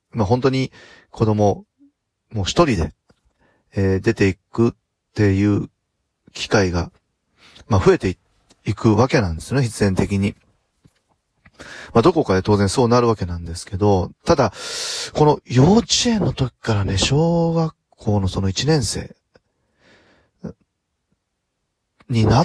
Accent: native